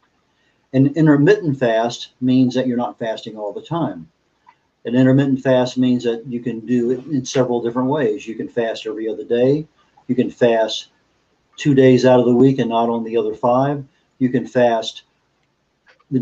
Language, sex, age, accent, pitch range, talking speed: English, male, 50-69, American, 120-140 Hz, 180 wpm